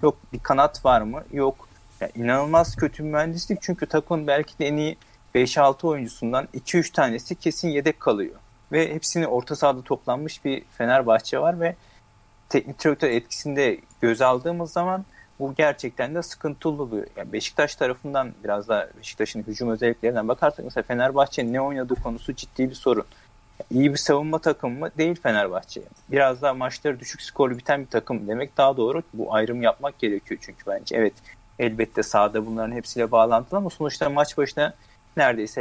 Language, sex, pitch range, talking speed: Turkish, male, 120-155 Hz, 160 wpm